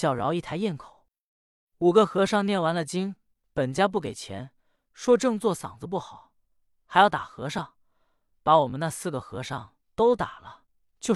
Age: 20-39